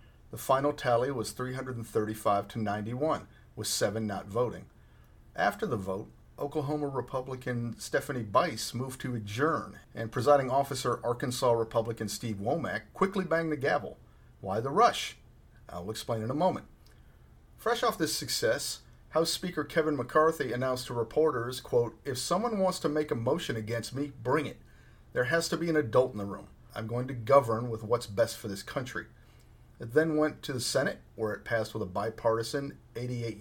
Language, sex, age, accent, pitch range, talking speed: English, male, 40-59, American, 115-155 Hz, 170 wpm